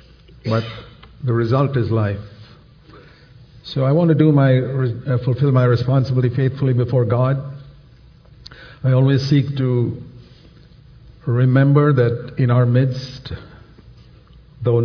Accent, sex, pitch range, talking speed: Indian, male, 115-135 Hz, 115 wpm